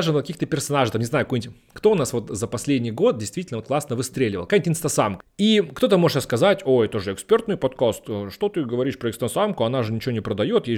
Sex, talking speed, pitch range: male, 210 wpm, 115-160 Hz